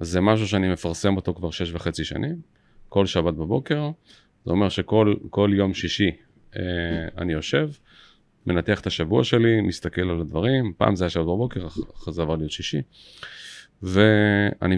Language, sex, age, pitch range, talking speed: Hebrew, male, 40-59, 90-120 Hz, 155 wpm